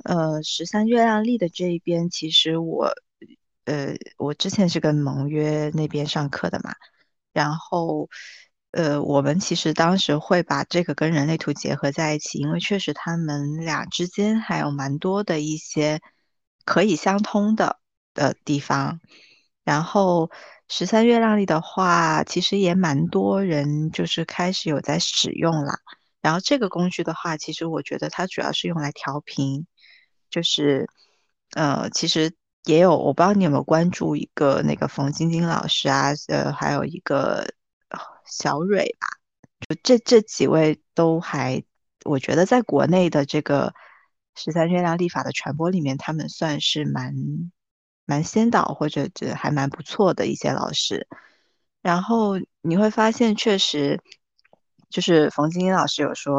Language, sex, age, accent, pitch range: Chinese, female, 20-39, native, 150-180 Hz